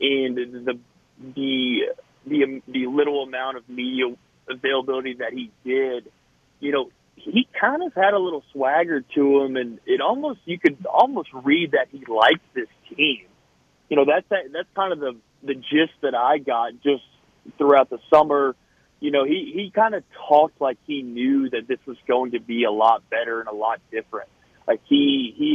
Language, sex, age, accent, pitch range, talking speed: English, male, 30-49, American, 125-155 Hz, 190 wpm